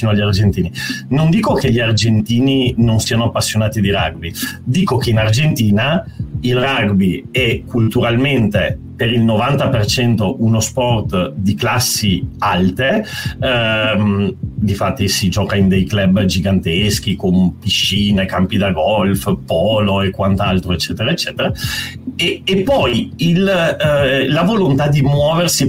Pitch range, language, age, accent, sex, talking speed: 105-135 Hz, Italian, 40-59, native, male, 130 wpm